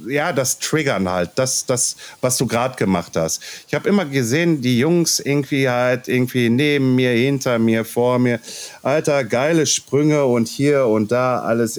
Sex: male